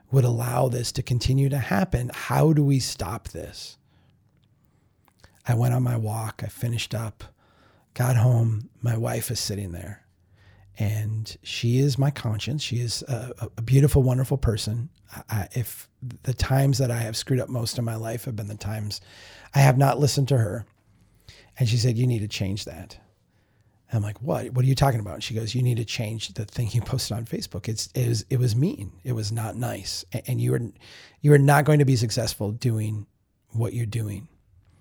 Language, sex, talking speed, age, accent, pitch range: English, male, 195 wpm, 40-59, American, 105-125 Hz